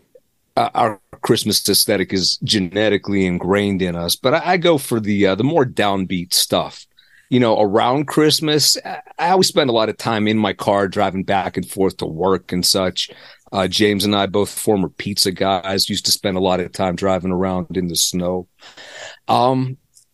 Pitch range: 95-120 Hz